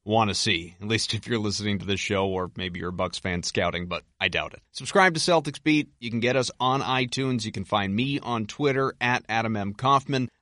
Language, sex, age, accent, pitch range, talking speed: English, male, 30-49, American, 100-115 Hz, 240 wpm